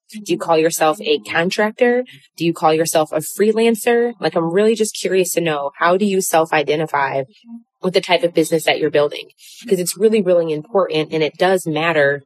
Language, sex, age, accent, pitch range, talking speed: English, female, 20-39, American, 155-200 Hz, 195 wpm